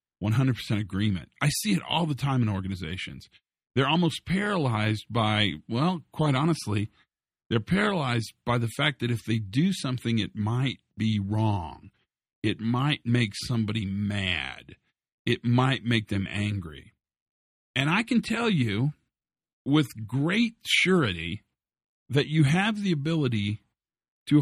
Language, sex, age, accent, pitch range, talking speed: English, male, 50-69, American, 105-150 Hz, 135 wpm